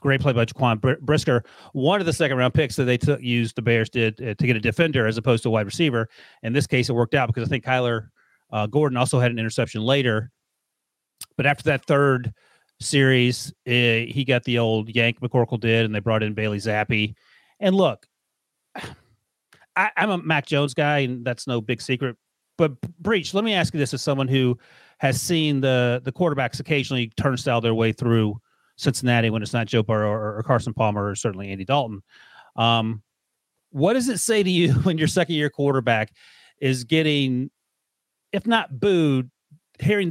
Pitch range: 115-150 Hz